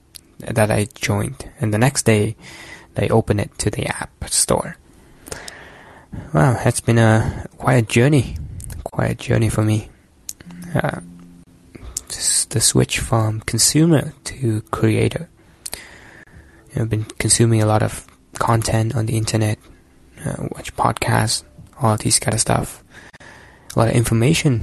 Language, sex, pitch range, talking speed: English, male, 105-125 Hz, 130 wpm